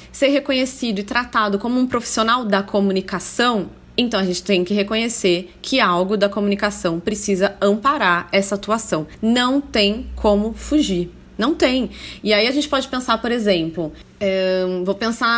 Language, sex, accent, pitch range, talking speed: Portuguese, female, Brazilian, 200-260 Hz, 150 wpm